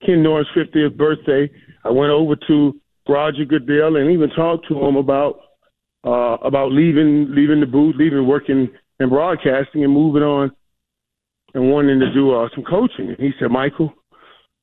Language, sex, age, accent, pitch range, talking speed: English, male, 40-59, American, 135-165 Hz, 165 wpm